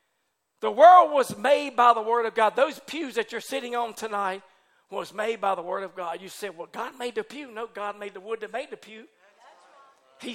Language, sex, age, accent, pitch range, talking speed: English, male, 50-69, American, 220-300 Hz, 230 wpm